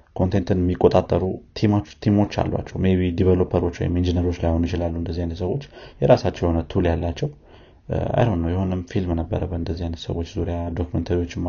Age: 30-49